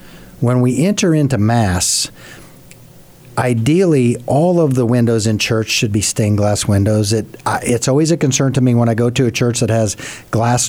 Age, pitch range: 50-69, 110-135 Hz